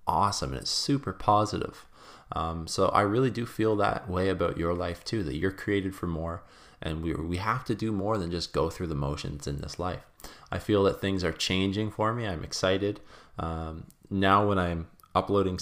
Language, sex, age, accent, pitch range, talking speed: English, male, 20-39, American, 80-100 Hz, 205 wpm